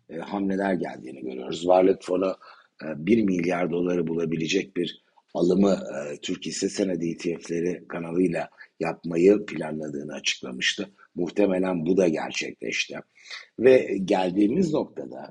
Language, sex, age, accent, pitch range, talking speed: Turkish, male, 60-79, native, 85-105 Hz, 110 wpm